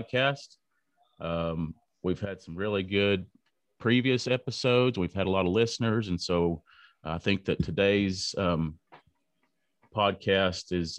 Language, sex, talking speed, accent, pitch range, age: English, male, 130 wpm, American, 90-110 Hz, 30-49